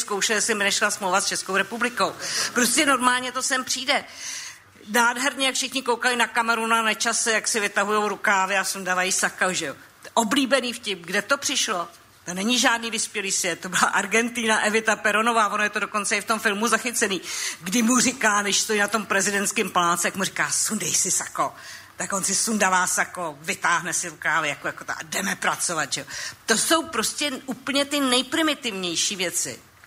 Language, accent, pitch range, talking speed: Czech, native, 200-255 Hz, 180 wpm